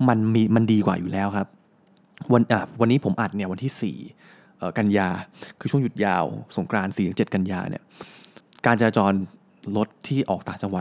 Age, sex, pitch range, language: 20-39, male, 100-145 Hz, Thai